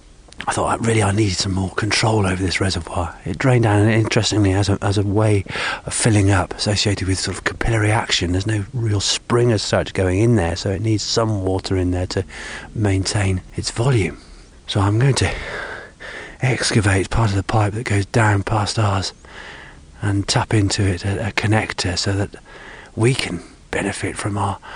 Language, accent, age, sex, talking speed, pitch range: English, British, 40-59, male, 190 wpm, 95-110 Hz